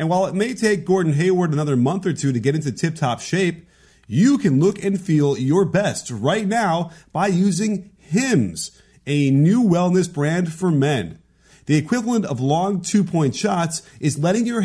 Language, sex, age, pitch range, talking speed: English, male, 30-49, 140-200 Hz, 175 wpm